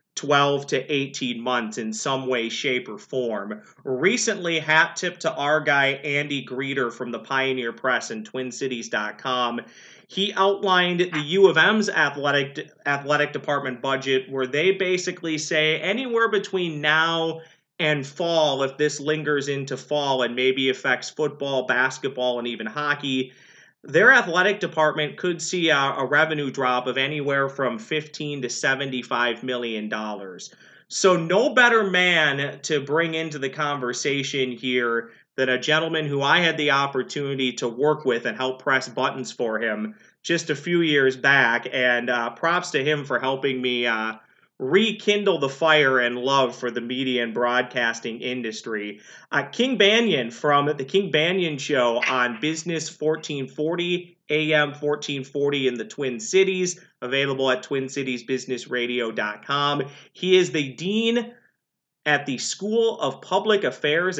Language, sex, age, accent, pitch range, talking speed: English, male, 30-49, American, 125-160 Hz, 145 wpm